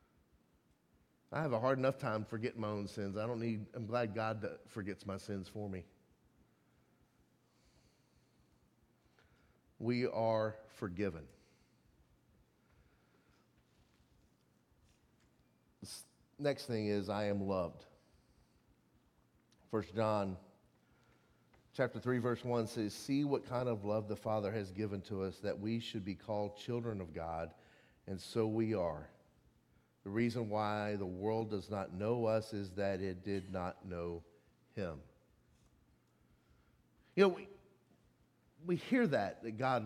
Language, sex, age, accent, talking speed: English, male, 40-59, American, 125 wpm